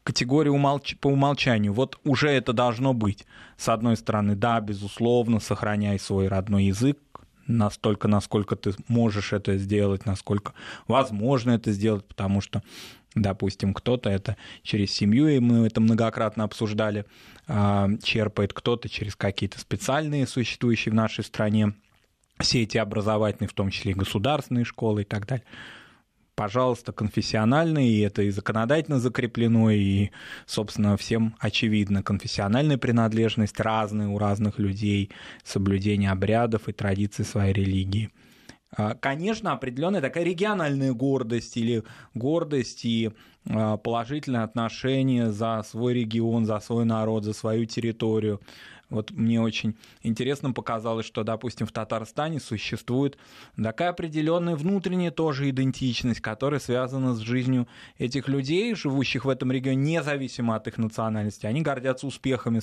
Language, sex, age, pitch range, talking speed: Russian, male, 20-39, 105-130 Hz, 130 wpm